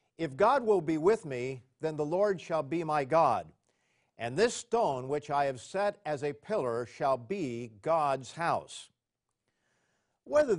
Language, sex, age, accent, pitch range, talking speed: English, male, 50-69, American, 140-185 Hz, 160 wpm